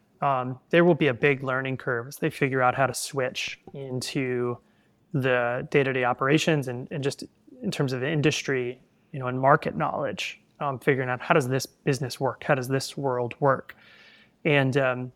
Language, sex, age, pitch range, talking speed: English, male, 30-49, 125-150 Hz, 180 wpm